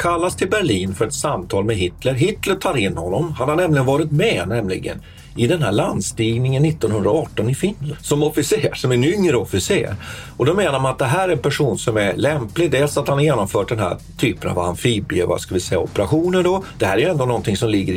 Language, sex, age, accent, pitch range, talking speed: Swedish, male, 40-59, native, 105-150 Hz, 220 wpm